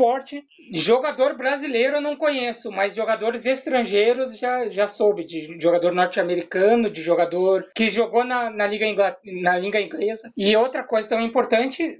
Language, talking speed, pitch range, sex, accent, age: Portuguese, 160 wpm, 200-260 Hz, male, Brazilian, 20-39